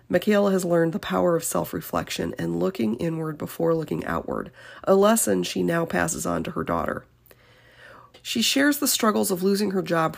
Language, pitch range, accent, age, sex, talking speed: English, 165-200 Hz, American, 40-59, female, 175 wpm